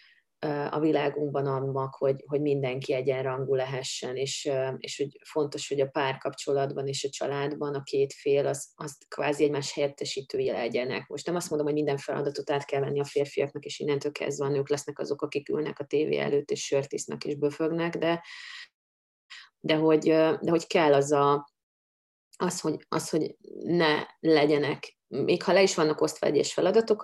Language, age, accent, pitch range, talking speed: English, 30-49, Finnish, 135-155 Hz, 170 wpm